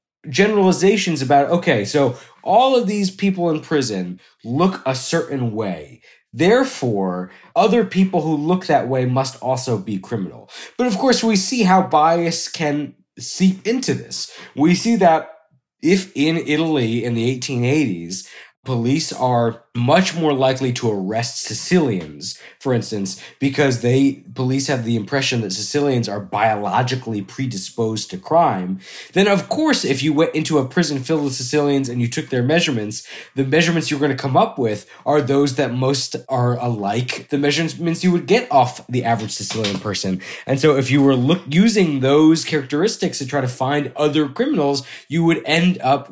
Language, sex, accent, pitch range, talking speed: English, male, American, 120-160 Hz, 165 wpm